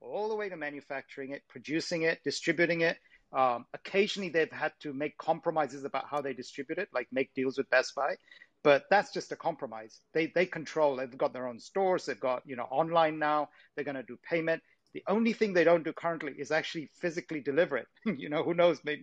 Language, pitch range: English, 135-165 Hz